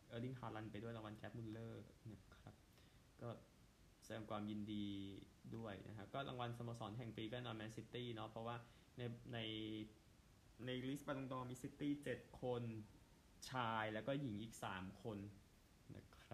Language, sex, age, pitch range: Thai, male, 20-39, 105-120 Hz